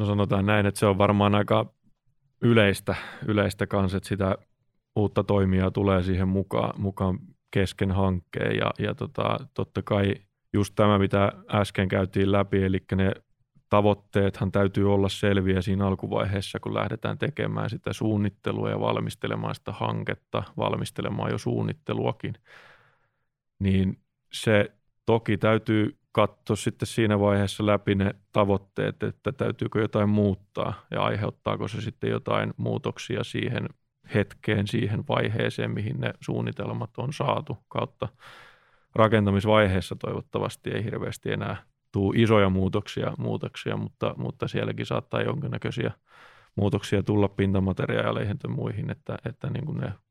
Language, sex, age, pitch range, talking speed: Finnish, male, 20-39, 100-110 Hz, 125 wpm